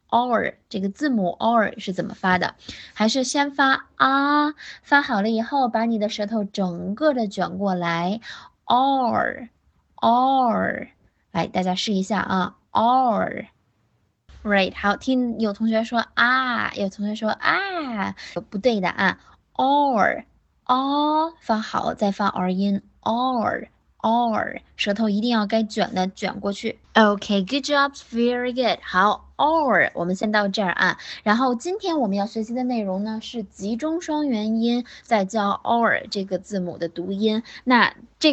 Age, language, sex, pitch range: 20-39, Chinese, female, 200-260 Hz